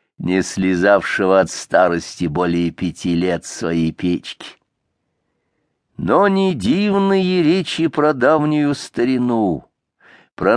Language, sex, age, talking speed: English, male, 50-69, 95 wpm